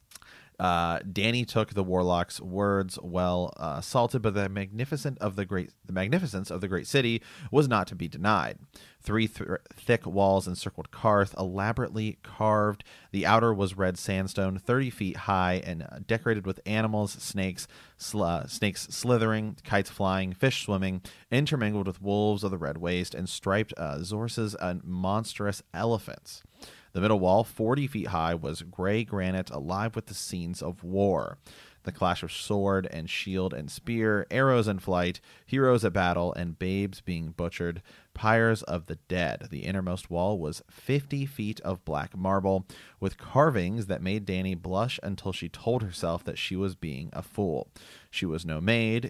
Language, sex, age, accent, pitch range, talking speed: English, male, 30-49, American, 90-110 Hz, 165 wpm